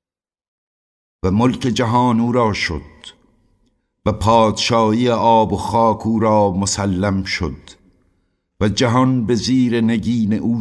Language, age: Persian, 60-79